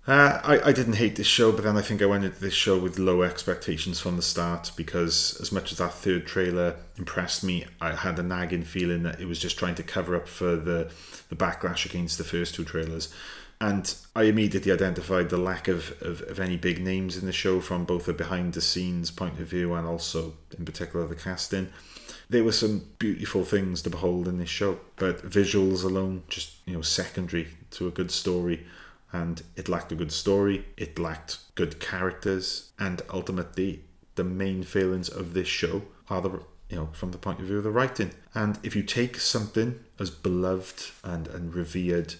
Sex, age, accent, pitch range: male, 30-49, British, 85-95 Hz